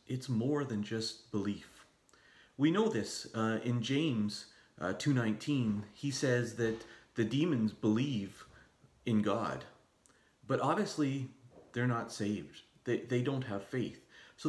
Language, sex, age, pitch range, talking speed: English, male, 40-59, 105-130 Hz, 135 wpm